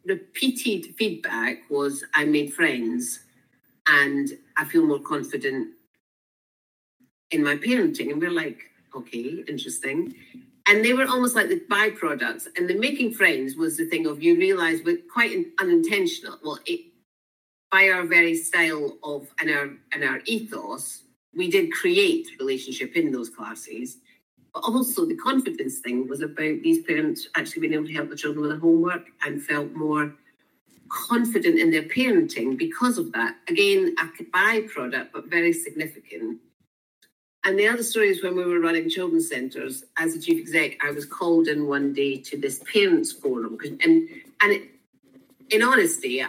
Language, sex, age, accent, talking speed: English, female, 50-69, British, 160 wpm